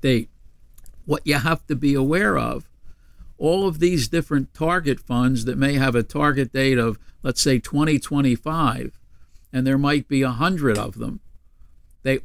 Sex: male